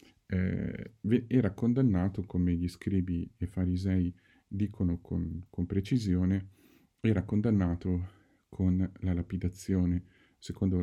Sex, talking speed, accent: male, 95 wpm, native